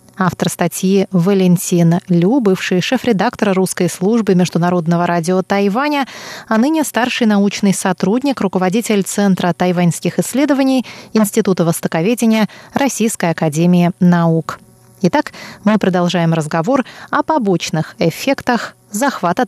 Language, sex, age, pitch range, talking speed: Russian, female, 20-39, 180-245 Hz, 100 wpm